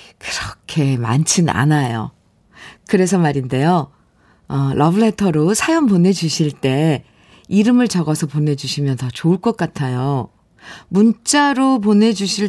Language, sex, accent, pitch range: Korean, female, native, 155-205 Hz